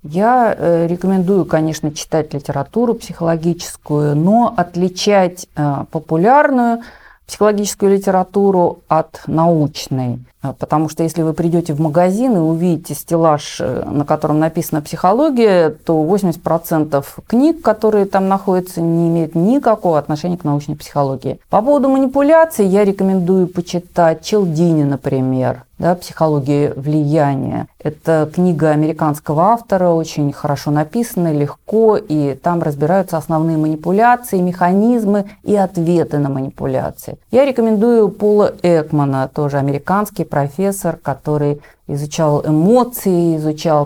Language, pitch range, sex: Russian, 150-195 Hz, female